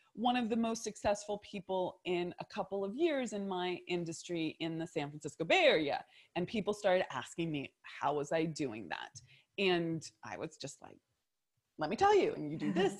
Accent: American